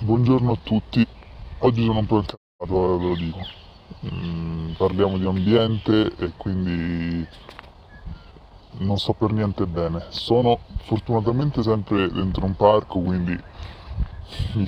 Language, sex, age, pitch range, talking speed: Italian, female, 20-39, 95-115 Hz, 120 wpm